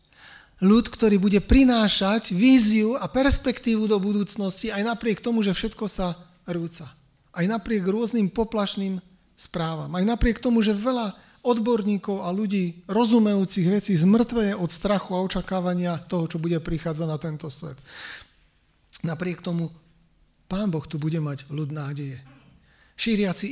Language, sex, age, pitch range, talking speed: Slovak, male, 40-59, 155-205 Hz, 135 wpm